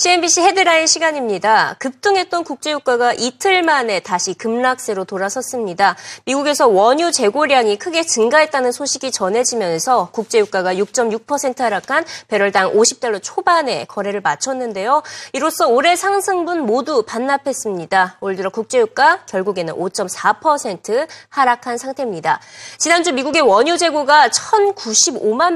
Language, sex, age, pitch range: Korean, female, 20-39, 220-340 Hz